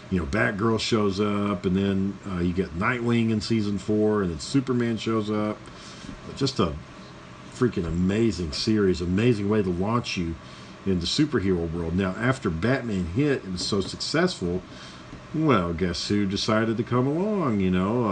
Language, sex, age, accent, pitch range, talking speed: English, male, 50-69, American, 90-110 Hz, 165 wpm